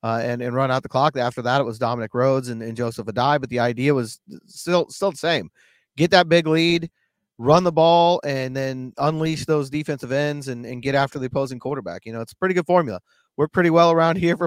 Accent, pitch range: American, 140-170 Hz